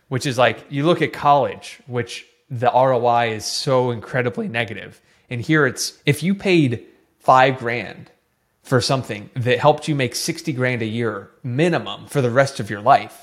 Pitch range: 115-140 Hz